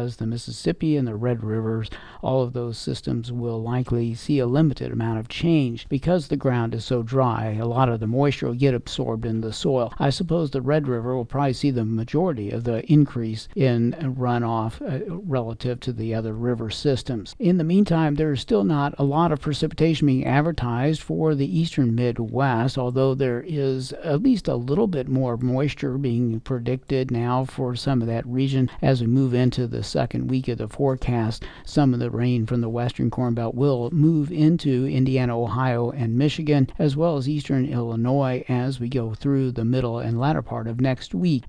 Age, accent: 60-79, American